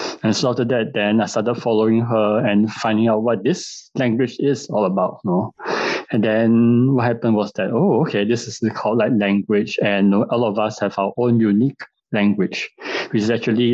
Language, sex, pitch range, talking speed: English, male, 105-125 Hz, 195 wpm